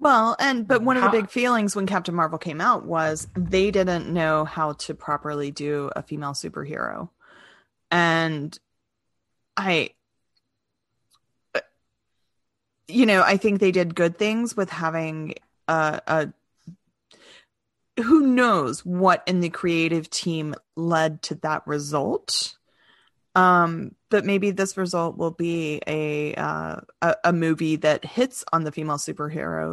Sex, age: female, 30-49